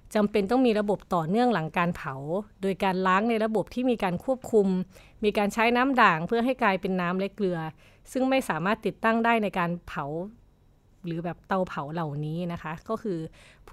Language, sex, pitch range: Thai, female, 175-225 Hz